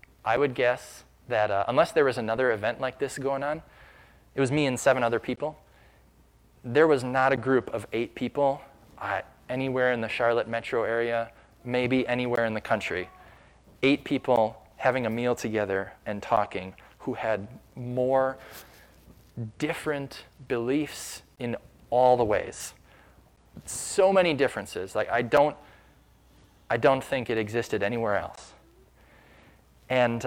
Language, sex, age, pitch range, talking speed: English, male, 20-39, 110-145 Hz, 145 wpm